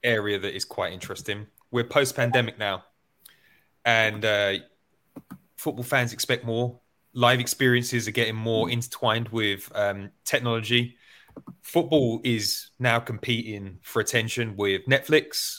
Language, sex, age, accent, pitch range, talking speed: English, male, 20-39, British, 105-130 Hz, 125 wpm